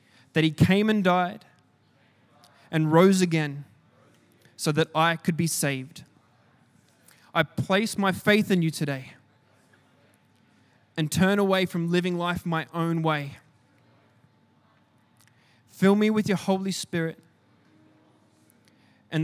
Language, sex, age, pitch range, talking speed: English, male, 20-39, 150-180 Hz, 115 wpm